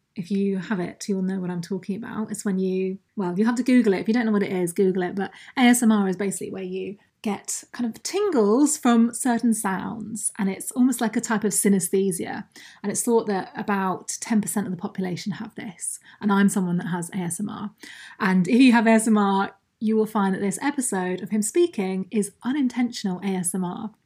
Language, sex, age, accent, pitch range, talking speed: English, female, 20-39, British, 190-225 Hz, 205 wpm